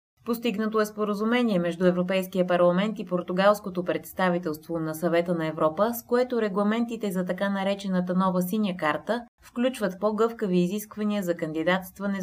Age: 20-39